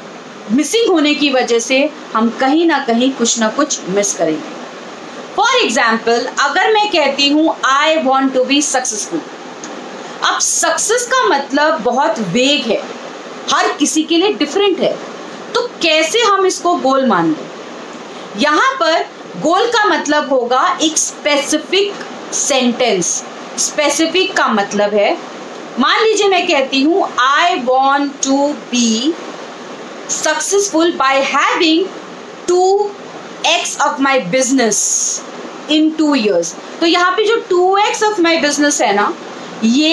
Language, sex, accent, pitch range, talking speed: English, female, Indian, 250-345 Hz, 130 wpm